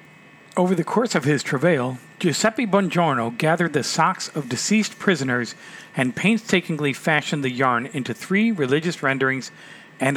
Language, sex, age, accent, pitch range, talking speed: English, male, 40-59, American, 135-180 Hz, 140 wpm